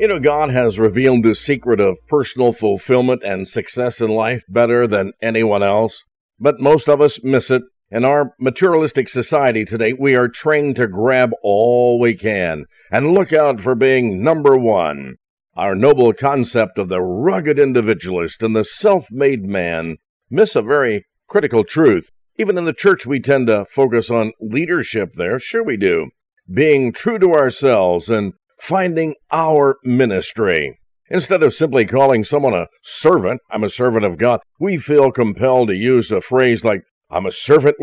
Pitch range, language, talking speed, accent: 115-150 Hz, English, 165 wpm, American